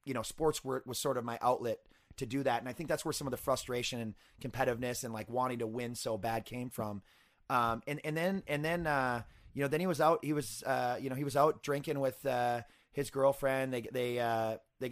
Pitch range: 115-135 Hz